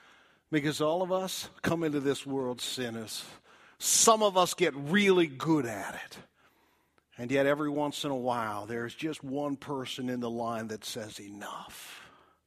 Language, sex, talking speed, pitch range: English, male, 165 wpm, 120-150 Hz